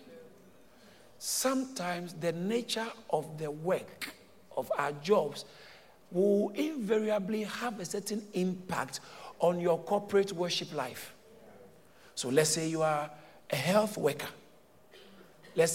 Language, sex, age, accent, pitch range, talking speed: English, male, 50-69, Nigerian, 180-265 Hz, 110 wpm